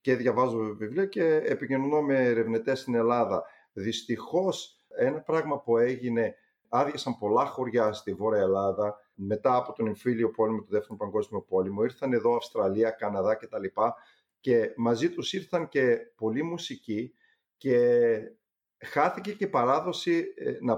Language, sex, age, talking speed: Greek, male, 50-69, 135 wpm